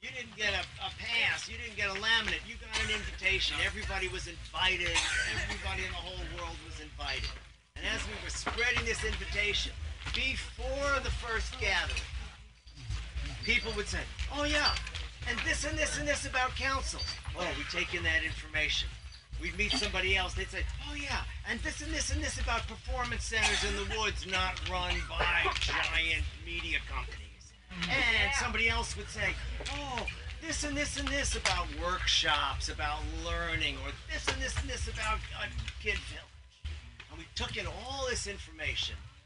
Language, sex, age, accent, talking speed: English, male, 40-59, American, 175 wpm